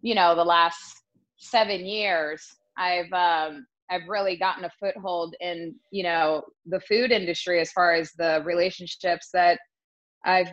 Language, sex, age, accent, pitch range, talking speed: English, female, 20-39, American, 170-185 Hz, 150 wpm